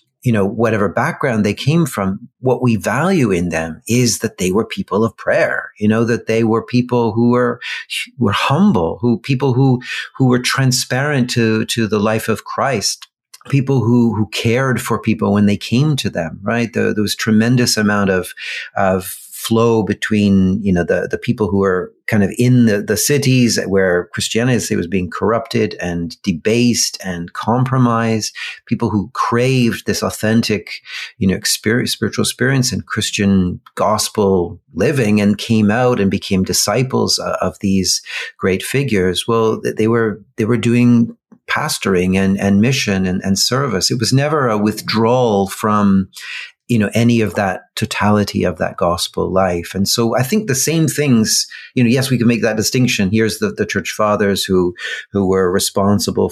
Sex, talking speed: male, 175 wpm